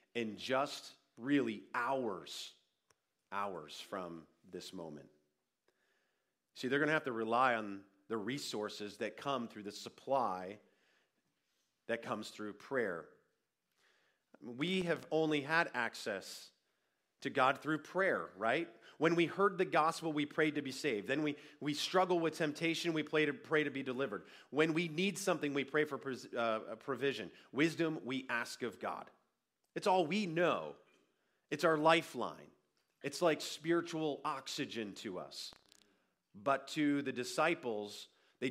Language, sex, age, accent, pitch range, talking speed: English, male, 40-59, American, 120-155 Hz, 140 wpm